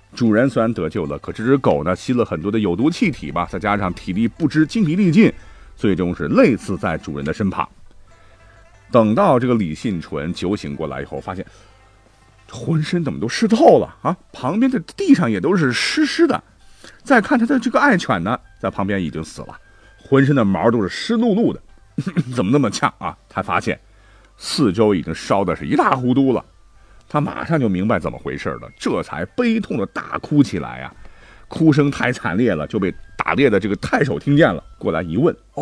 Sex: male